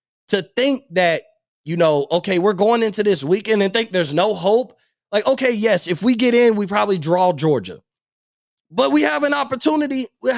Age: 20-39